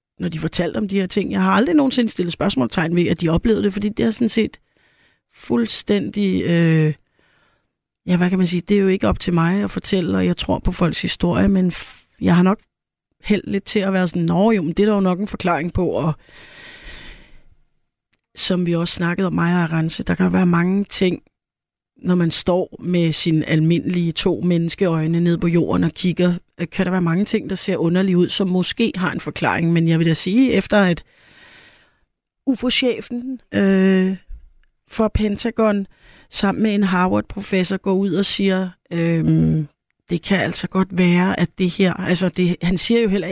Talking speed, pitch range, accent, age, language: 195 wpm, 170-200 Hz, native, 30-49, Danish